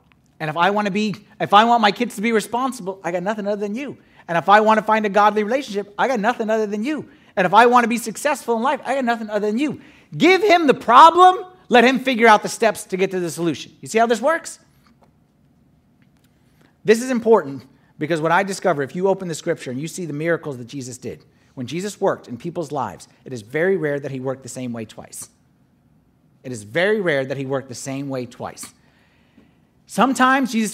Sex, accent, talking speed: male, American, 235 wpm